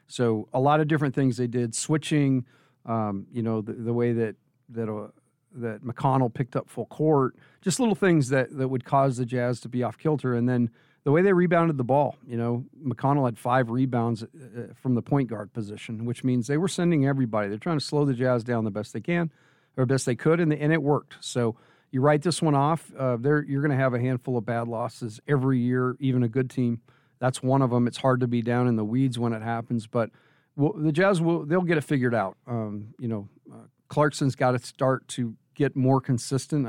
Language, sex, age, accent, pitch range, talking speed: English, male, 40-59, American, 120-140 Hz, 230 wpm